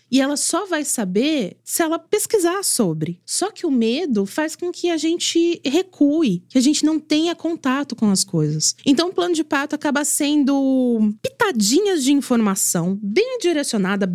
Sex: female